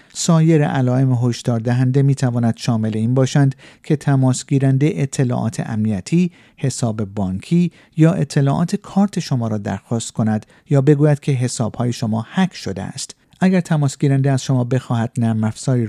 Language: Persian